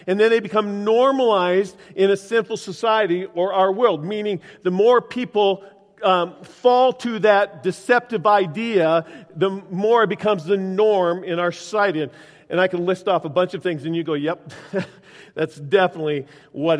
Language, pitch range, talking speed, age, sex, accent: English, 160-210 Hz, 170 wpm, 50-69, male, American